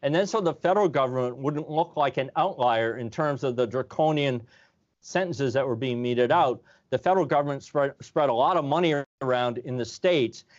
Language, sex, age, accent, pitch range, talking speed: English, male, 40-59, American, 125-160 Hz, 200 wpm